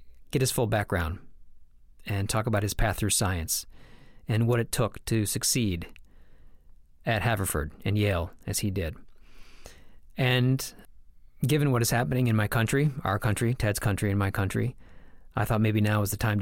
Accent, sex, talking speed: American, male, 170 wpm